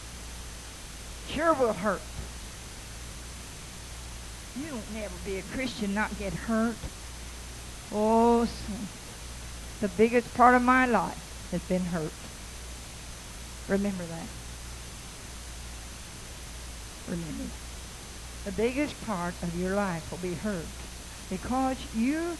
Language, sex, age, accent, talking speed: English, female, 60-79, American, 95 wpm